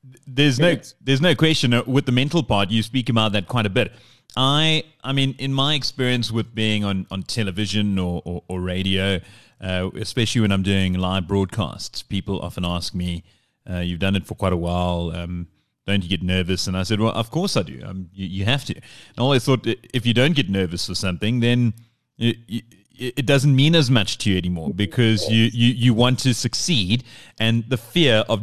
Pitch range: 105-140 Hz